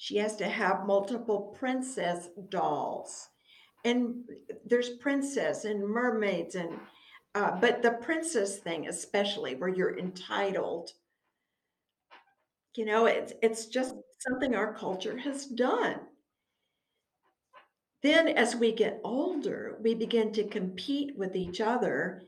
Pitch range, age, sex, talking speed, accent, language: 200-255 Hz, 60-79, female, 120 wpm, American, English